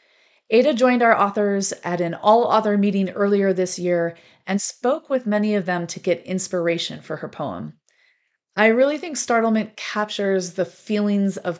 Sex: female